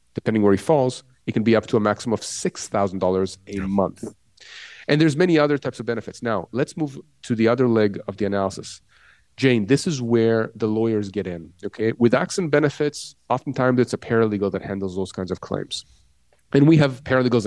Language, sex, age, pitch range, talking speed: English, male, 30-49, 100-130 Hz, 200 wpm